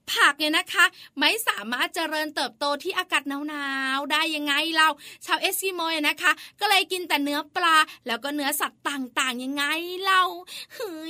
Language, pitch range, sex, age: Thai, 295-370 Hz, female, 20-39